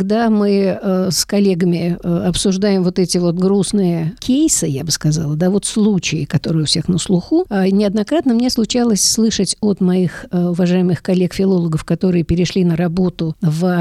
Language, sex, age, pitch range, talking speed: Russian, female, 50-69, 175-210 Hz, 150 wpm